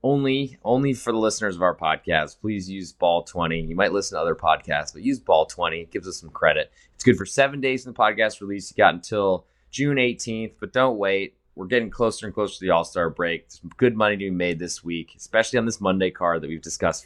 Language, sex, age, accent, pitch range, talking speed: English, male, 20-39, American, 90-120 Hz, 235 wpm